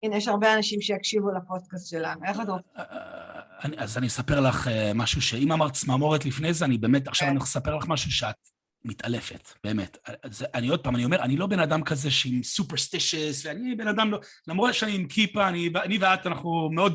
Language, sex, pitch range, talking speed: Hebrew, male, 120-185 Hz, 190 wpm